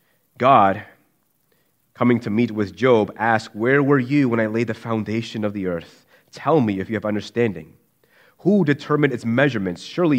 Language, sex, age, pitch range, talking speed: English, male, 30-49, 105-130 Hz, 170 wpm